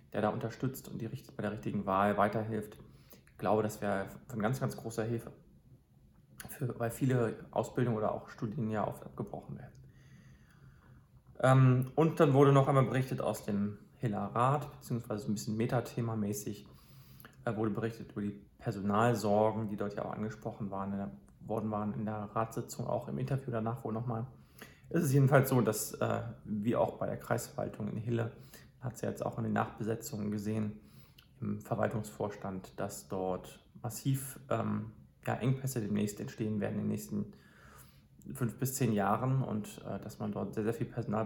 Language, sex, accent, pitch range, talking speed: German, male, German, 105-125 Hz, 175 wpm